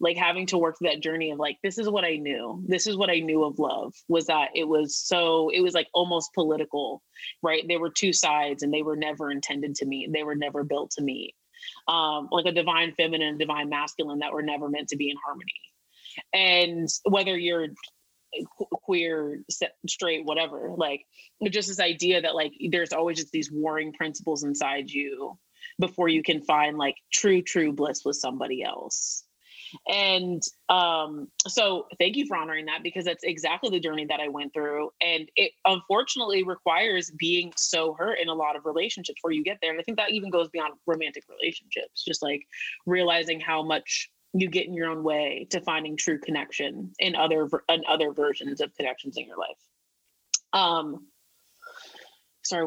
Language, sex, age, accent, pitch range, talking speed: English, female, 30-49, American, 150-180 Hz, 185 wpm